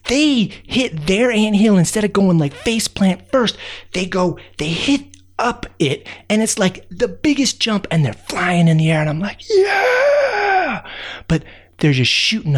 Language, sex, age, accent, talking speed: English, male, 30-49, American, 175 wpm